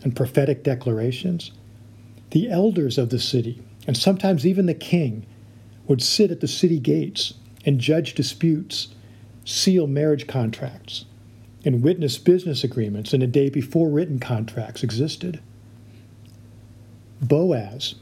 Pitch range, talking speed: 115-150 Hz, 125 wpm